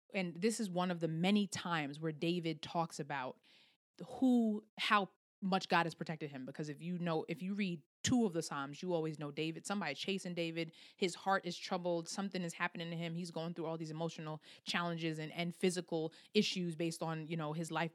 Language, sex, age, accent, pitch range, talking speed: English, female, 20-39, American, 165-210 Hz, 210 wpm